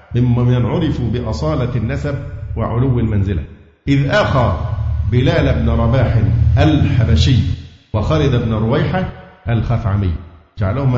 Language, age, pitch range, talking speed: Arabic, 50-69, 110-135 Hz, 95 wpm